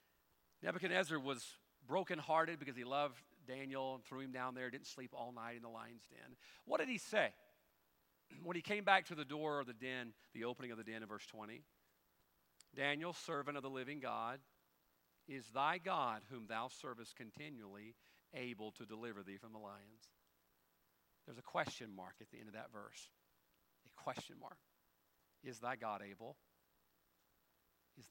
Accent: American